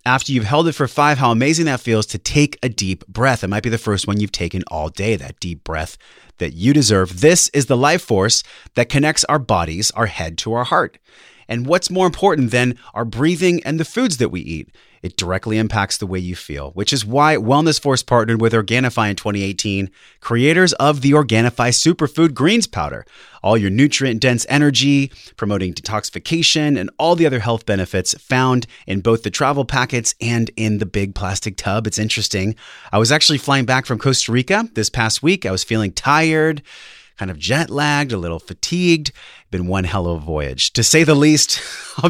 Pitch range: 100-145 Hz